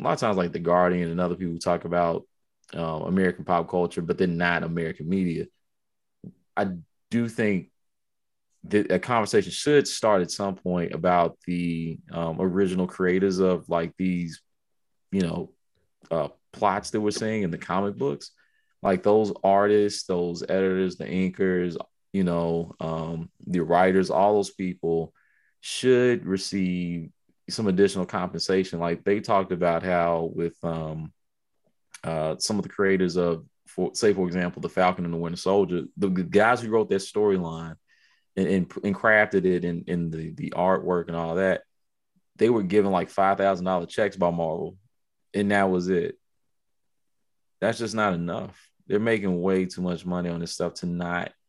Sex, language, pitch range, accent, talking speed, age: male, English, 85-95 Hz, American, 165 wpm, 20-39